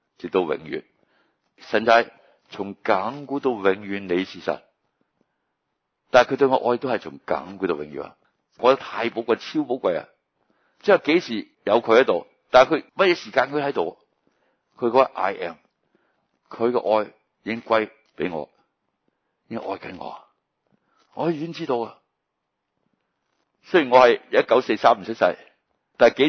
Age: 60-79